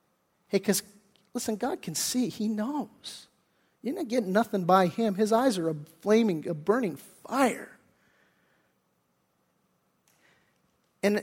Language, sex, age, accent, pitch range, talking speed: English, male, 50-69, American, 190-235 Hz, 125 wpm